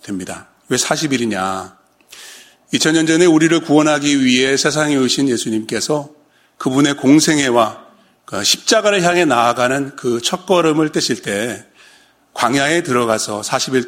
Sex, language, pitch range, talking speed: male, English, 120-165 Hz, 95 wpm